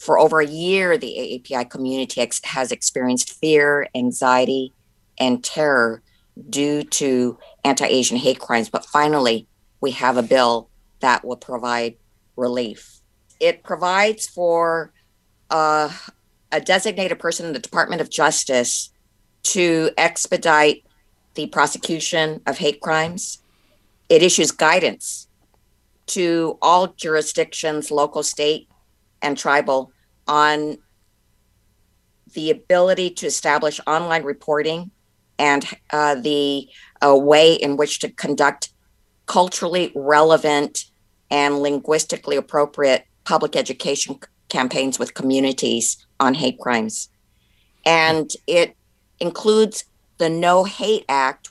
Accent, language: American, English